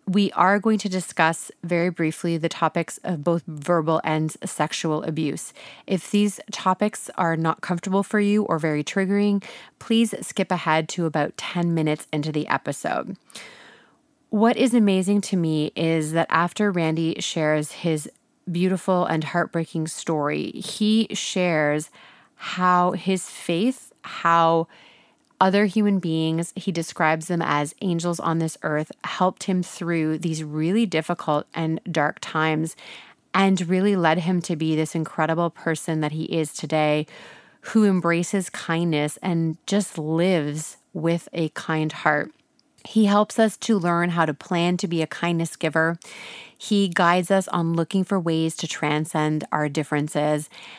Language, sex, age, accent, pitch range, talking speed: English, female, 30-49, American, 160-190 Hz, 145 wpm